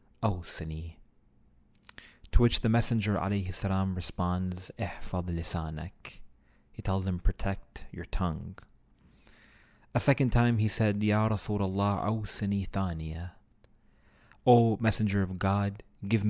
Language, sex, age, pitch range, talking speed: English, male, 30-49, 85-105 Hz, 90 wpm